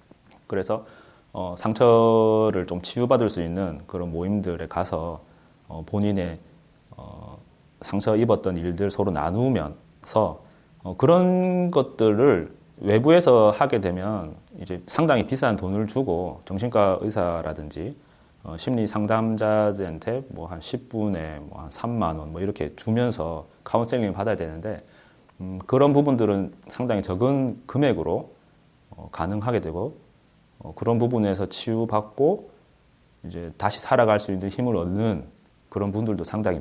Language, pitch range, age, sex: Korean, 90-115 Hz, 30-49, male